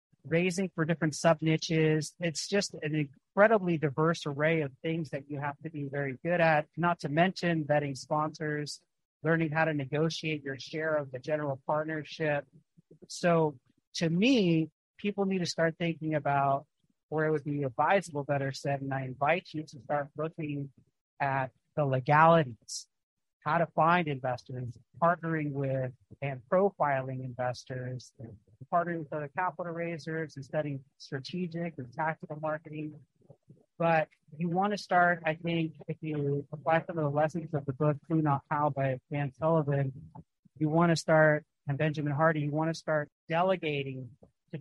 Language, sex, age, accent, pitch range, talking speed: English, male, 40-59, American, 145-170 Hz, 160 wpm